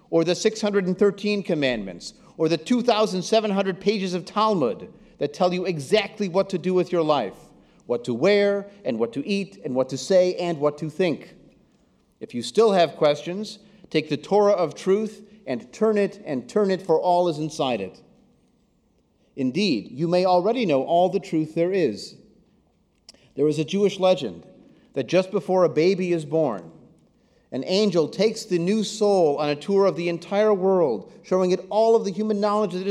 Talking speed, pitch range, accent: 180 wpm, 150-205 Hz, American